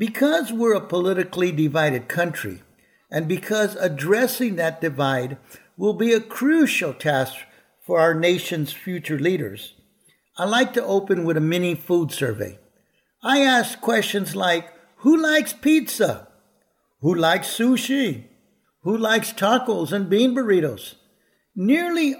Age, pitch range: 60-79, 160-225 Hz